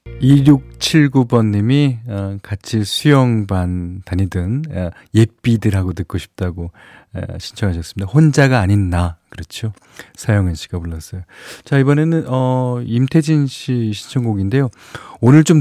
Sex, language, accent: male, Korean, native